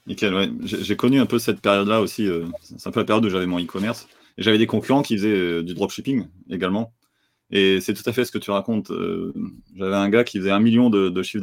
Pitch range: 90-115 Hz